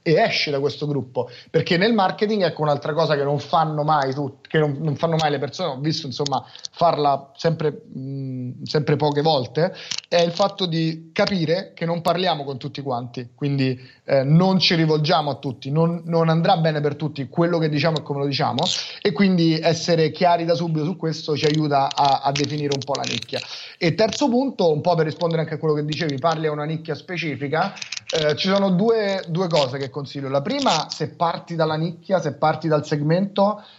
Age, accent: 30-49, native